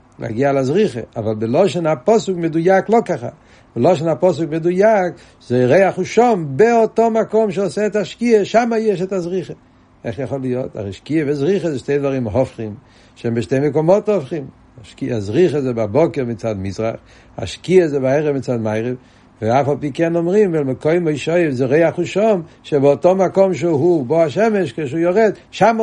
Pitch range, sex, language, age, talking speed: 120-165 Hz, male, Hebrew, 60-79, 150 wpm